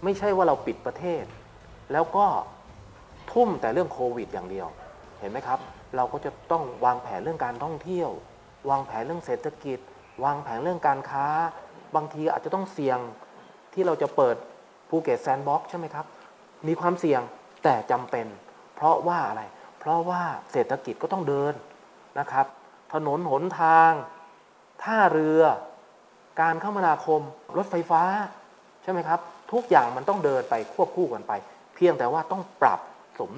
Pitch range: 135-175 Hz